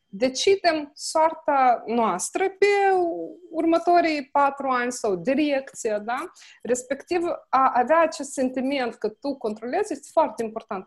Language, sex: Romanian, female